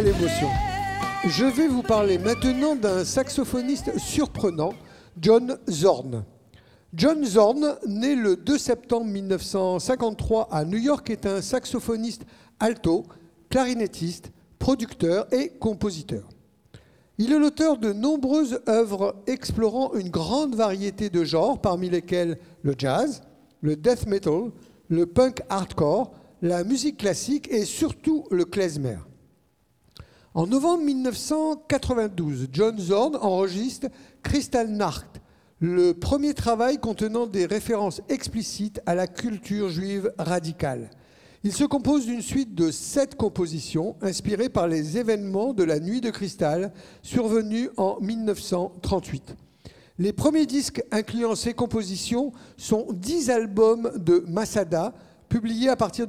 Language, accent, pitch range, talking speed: French, French, 180-250 Hz, 120 wpm